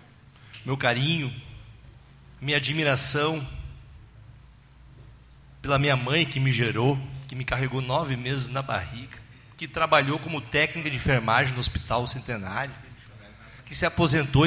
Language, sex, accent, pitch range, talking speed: Portuguese, male, Brazilian, 125-180 Hz, 120 wpm